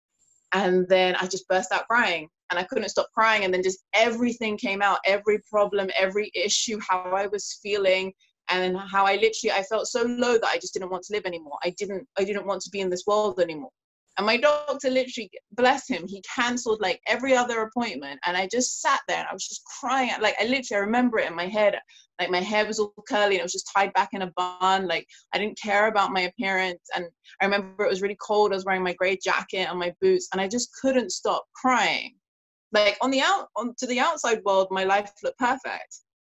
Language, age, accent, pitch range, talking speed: English, 20-39, British, 190-245 Hz, 235 wpm